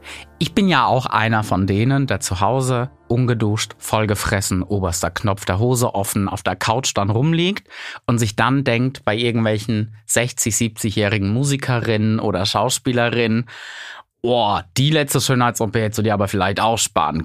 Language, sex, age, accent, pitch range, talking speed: German, male, 30-49, German, 105-130 Hz, 150 wpm